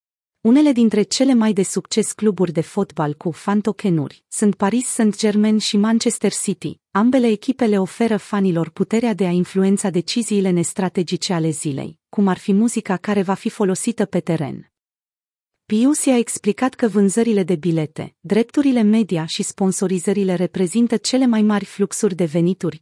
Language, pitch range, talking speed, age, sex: Romanian, 180-220 Hz, 150 wpm, 30-49, female